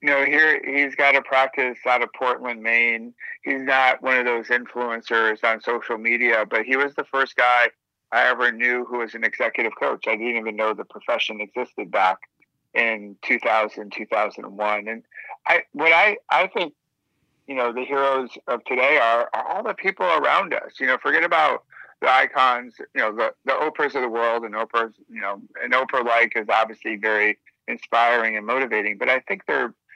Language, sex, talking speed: English, male, 190 wpm